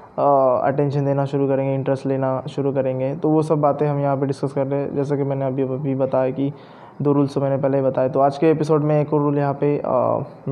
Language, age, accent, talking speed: Hindi, 20-39, native, 250 wpm